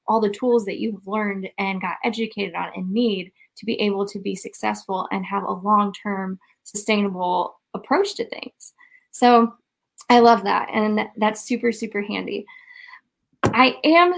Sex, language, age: female, English, 10-29